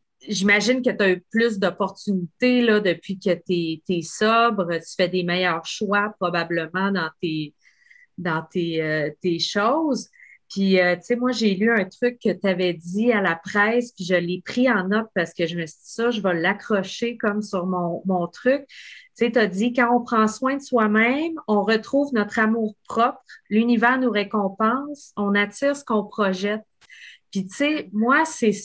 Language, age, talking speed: French, 30-49, 195 wpm